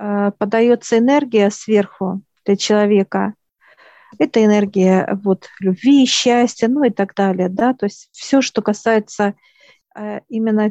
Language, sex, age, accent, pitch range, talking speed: Russian, female, 50-69, native, 200-225 Hz, 125 wpm